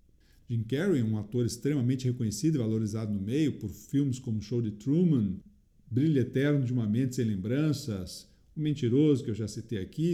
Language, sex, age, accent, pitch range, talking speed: Portuguese, male, 50-69, Brazilian, 110-135 Hz, 180 wpm